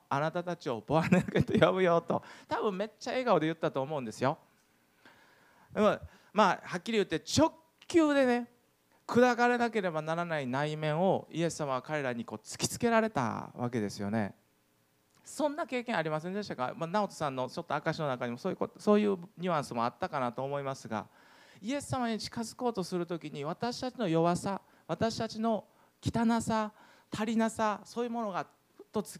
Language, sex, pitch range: Japanese, male, 135-220 Hz